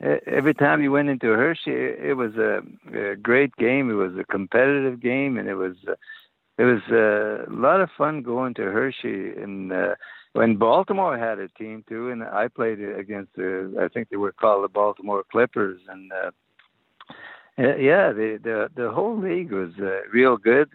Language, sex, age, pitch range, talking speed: English, male, 60-79, 100-135 Hz, 175 wpm